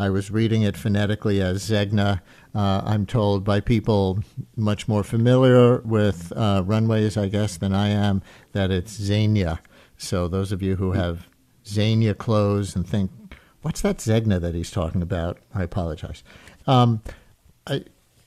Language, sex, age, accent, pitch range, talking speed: English, male, 50-69, American, 100-120 Hz, 155 wpm